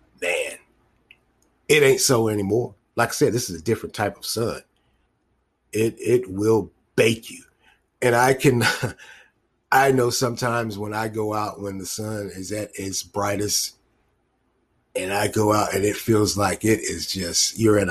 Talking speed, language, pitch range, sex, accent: 170 wpm, English, 95-115 Hz, male, American